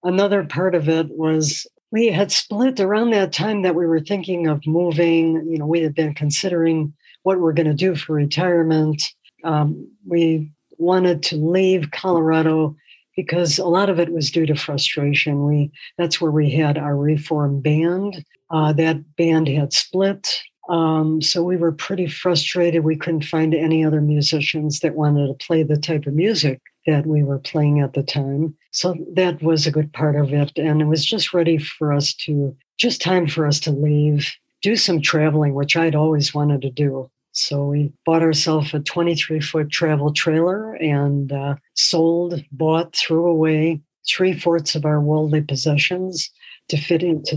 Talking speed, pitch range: 175 wpm, 150-170 Hz